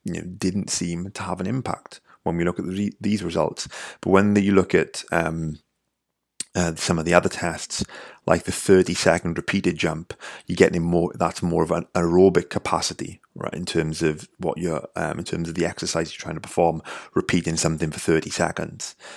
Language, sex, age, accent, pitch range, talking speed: English, male, 30-49, British, 80-95 Hz, 190 wpm